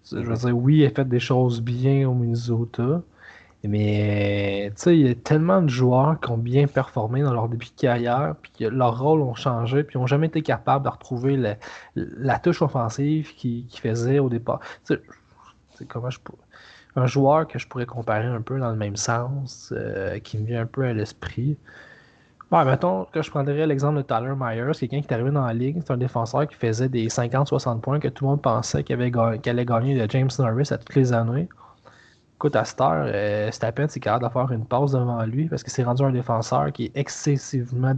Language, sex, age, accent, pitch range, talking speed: French, male, 20-39, Canadian, 115-140 Hz, 220 wpm